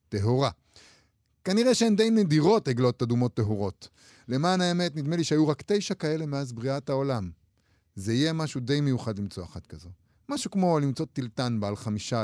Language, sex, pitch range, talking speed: Hebrew, male, 105-155 Hz, 160 wpm